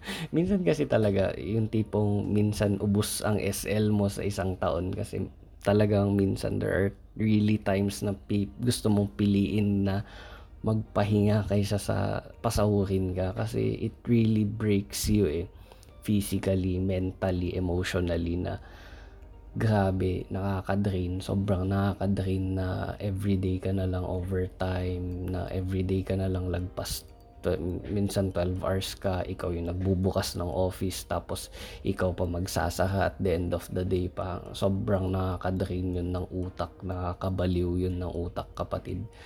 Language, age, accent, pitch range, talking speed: Filipino, 20-39, native, 90-105 Hz, 130 wpm